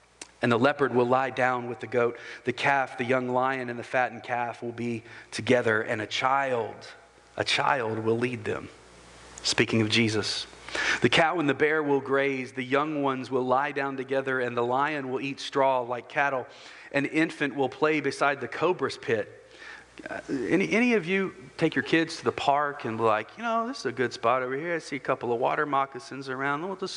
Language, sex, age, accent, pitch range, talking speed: English, male, 40-59, American, 115-140 Hz, 210 wpm